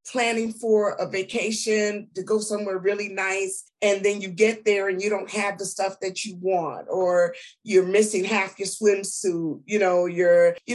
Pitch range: 185-230 Hz